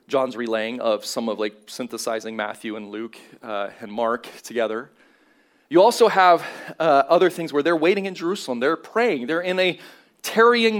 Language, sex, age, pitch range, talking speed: English, male, 30-49, 125-180 Hz, 170 wpm